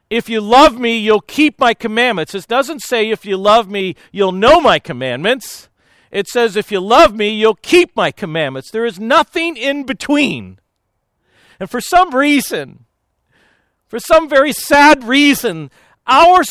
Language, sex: English, male